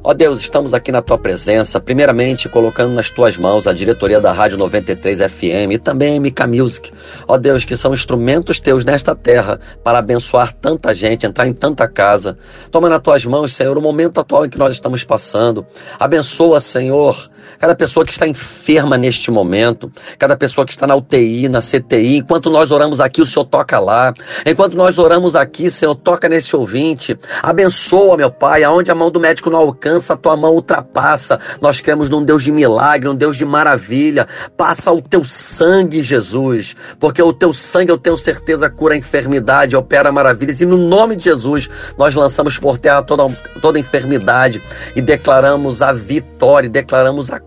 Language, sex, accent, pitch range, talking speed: Portuguese, male, Brazilian, 130-165 Hz, 185 wpm